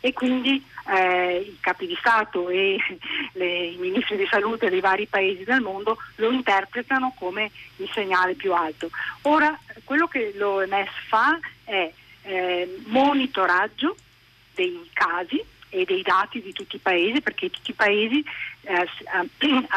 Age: 40-59